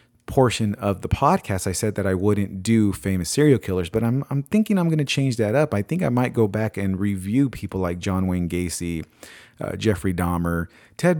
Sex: male